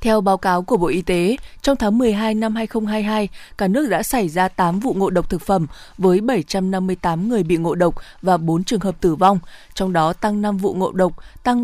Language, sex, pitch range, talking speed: Vietnamese, female, 175-215 Hz, 220 wpm